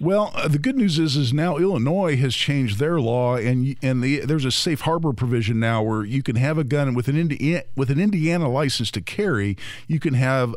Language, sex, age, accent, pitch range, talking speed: English, male, 50-69, American, 115-145 Hz, 220 wpm